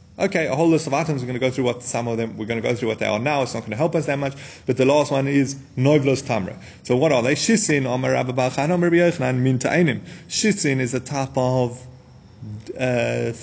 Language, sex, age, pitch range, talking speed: English, male, 30-49, 120-155 Hz, 215 wpm